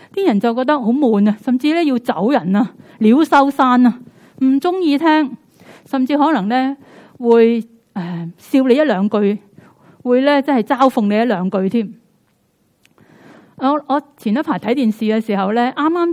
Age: 30-49